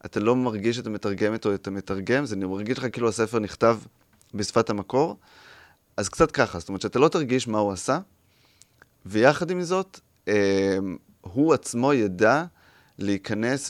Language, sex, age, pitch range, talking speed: Hebrew, male, 30-49, 95-115 Hz, 160 wpm